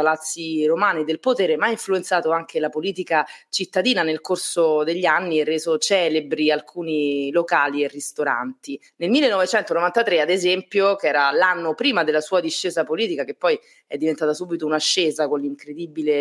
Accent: native